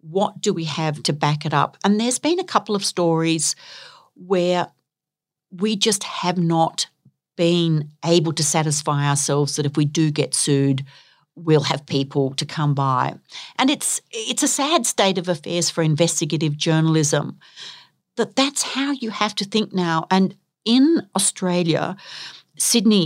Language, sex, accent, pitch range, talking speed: English, female, Australian, 150-190 Hz, 155 wpm